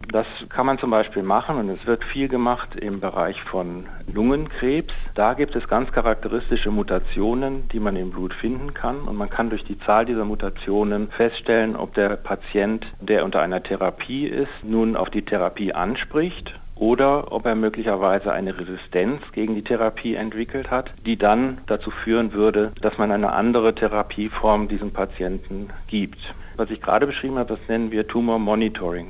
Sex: male